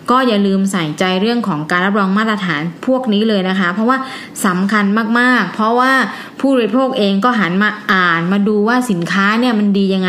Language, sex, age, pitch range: Thai, female, 20-39, 185-230 Hz